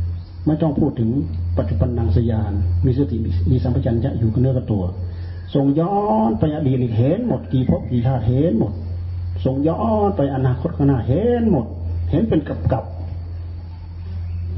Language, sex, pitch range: Thai, male, 90-130 Hz